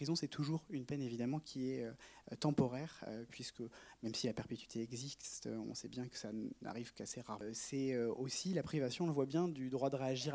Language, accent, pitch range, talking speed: French, French, 120-140 Hz, 210 wpm